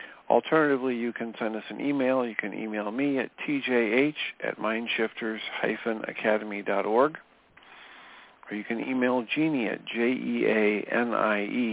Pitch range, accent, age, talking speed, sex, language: 110-125 Hz, American, 50-69, 115 wpm, male, English